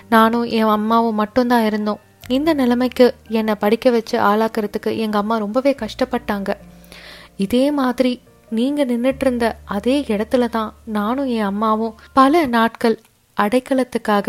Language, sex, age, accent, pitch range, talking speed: Tamil, female, 20-39, native, 215-245 Hz, 120 wpm